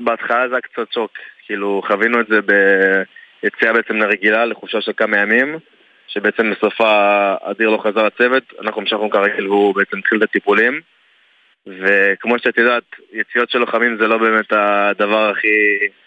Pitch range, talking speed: 100-115 Hz, 155 wpm